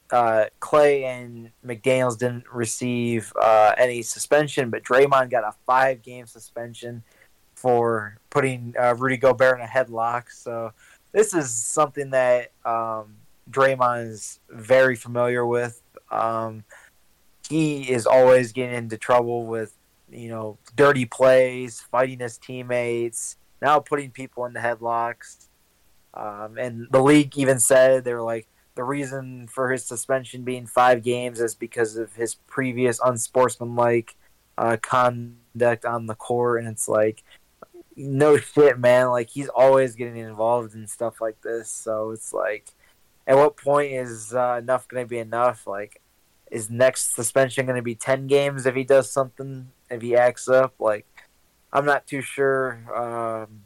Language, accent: English, American